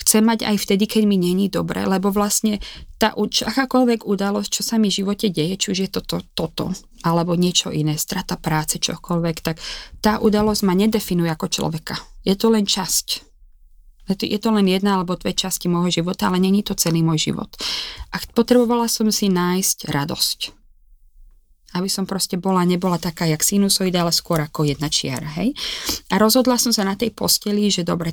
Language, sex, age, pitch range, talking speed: Slovak, female, 20-39, 175-215 Hz, 180 wpm